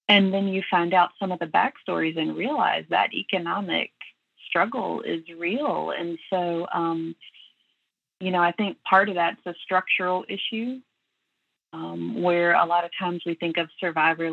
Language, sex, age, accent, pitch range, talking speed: English, female, 30-49, American, 165-195 Hz, 165 wpm